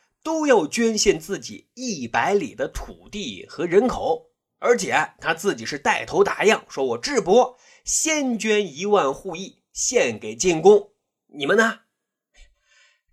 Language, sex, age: Chinese, male, 30-49